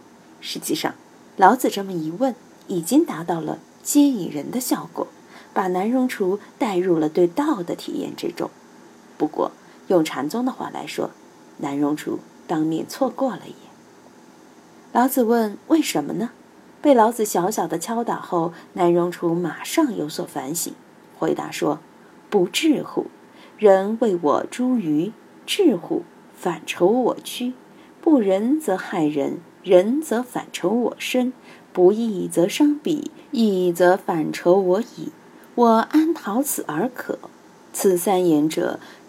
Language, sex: Chinese, female